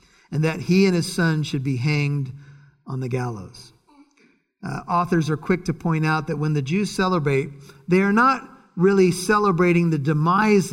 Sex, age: male, 50-69